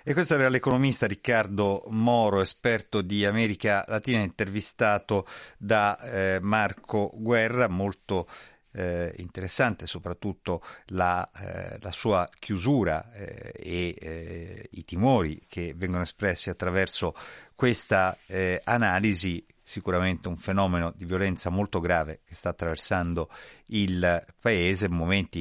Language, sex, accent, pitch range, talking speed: Italian, male, native, 85-105 Hz, 120 wpm